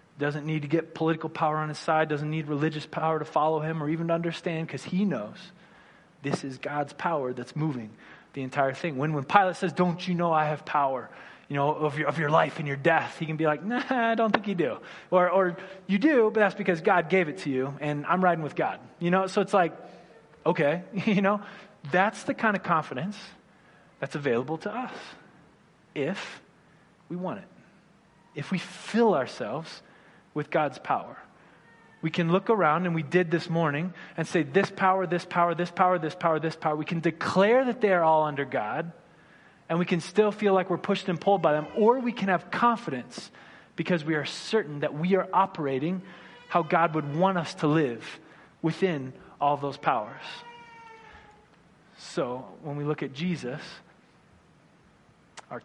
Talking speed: 195 wpm